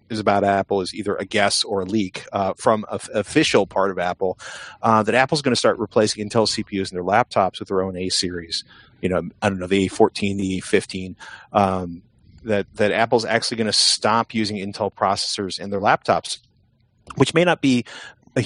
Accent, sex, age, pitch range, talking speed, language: American, male, 30-49, 100-150 Hz, 200 wpm, English